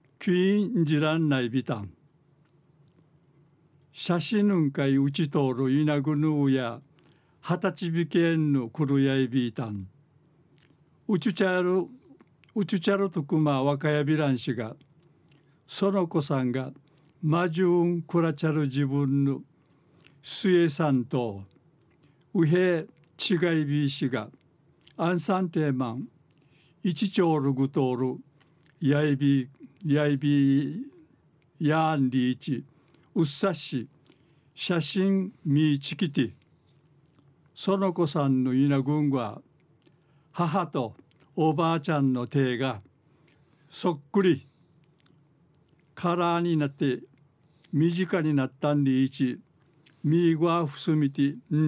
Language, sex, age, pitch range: Japanese, male, 60-79, 140-165 Hz